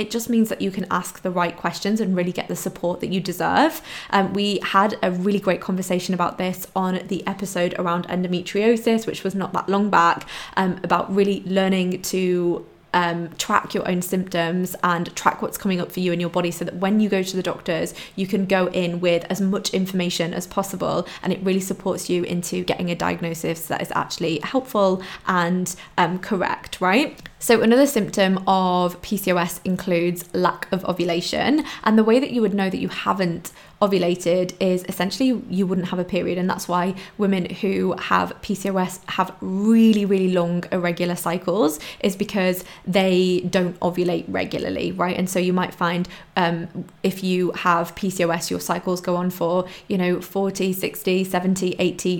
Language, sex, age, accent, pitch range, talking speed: English, female, 20-39, British, 175-195 Hz, 185 wpm